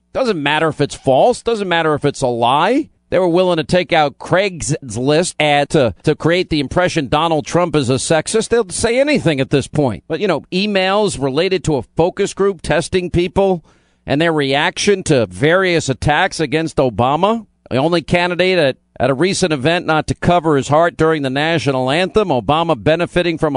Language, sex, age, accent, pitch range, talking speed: English, male, 50-69, American, 145-180 Hz, 190 wpm